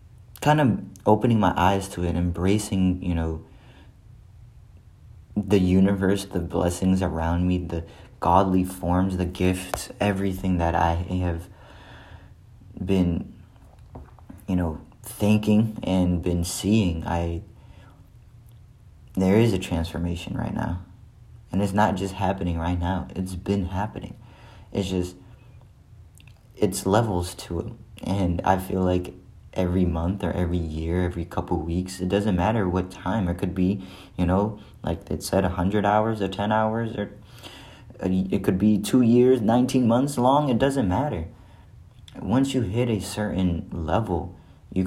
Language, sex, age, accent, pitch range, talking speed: English, male, 30-49, American, 90-110 Hz, 140 wpm